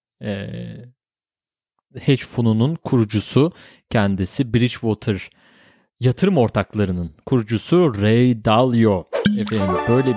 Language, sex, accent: Turkish, male, native